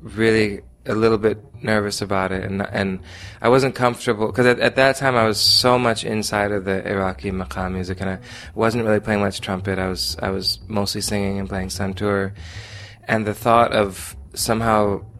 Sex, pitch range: male, 100-115 Hz